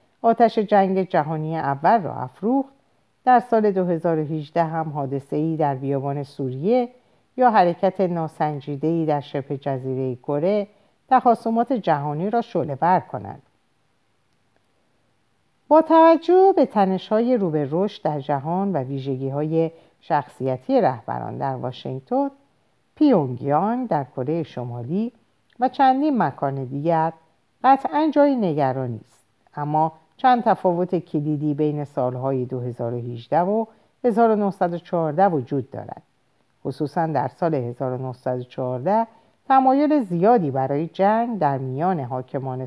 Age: 50-69